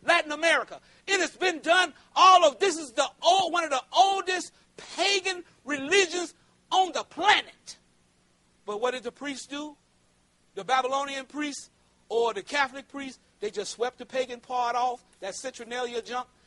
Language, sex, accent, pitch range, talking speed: English, male, American, 235-305 Hz, 160 wpm